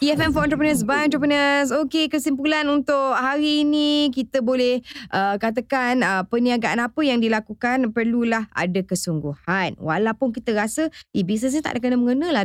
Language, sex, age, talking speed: Malay, female, 20-39, 150 wpm